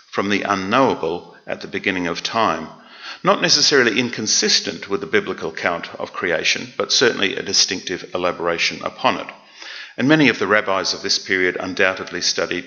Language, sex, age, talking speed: English, male, 50-69, 160 wpm